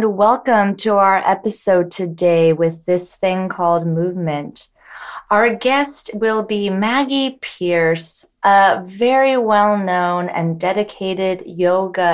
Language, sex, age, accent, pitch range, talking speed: English, female, 20-39, American, 170-200 Hz, 110 wpm